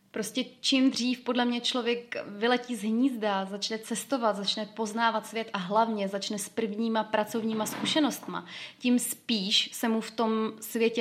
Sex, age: female, 20-39